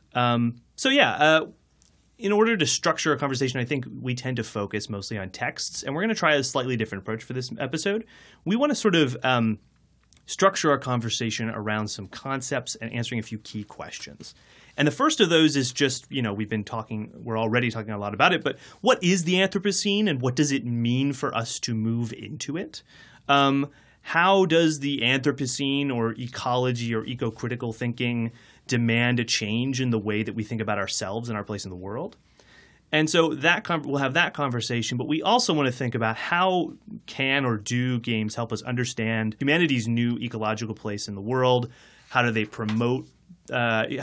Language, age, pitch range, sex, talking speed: English, 30-49, 110-145 Hz, male, 200 wpm